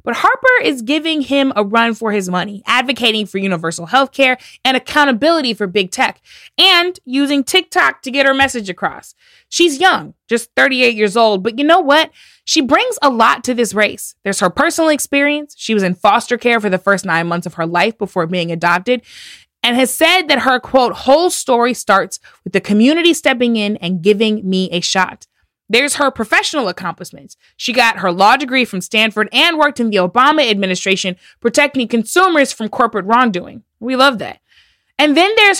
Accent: American